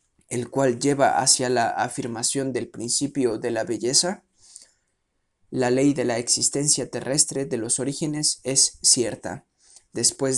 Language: Spanish